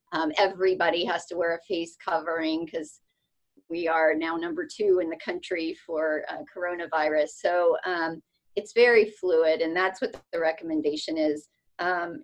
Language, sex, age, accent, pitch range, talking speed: English, female, 30-49, American, 165-240 Hz, 155 wpm